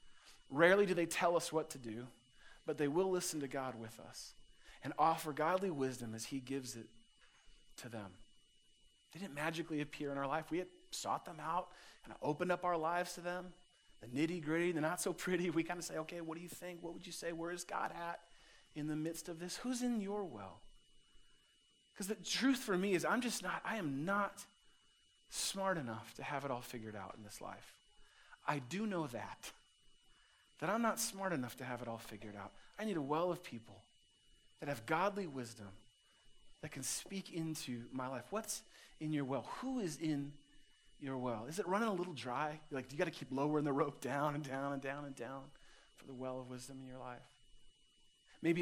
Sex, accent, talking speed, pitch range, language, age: male, American, 215 wpm, 130-175 Hz, English, 40-59